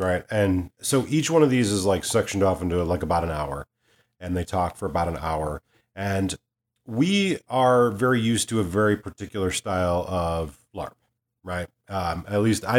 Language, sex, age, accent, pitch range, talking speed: English, male, 40-59, American, 95-120 Hz, 190 wpm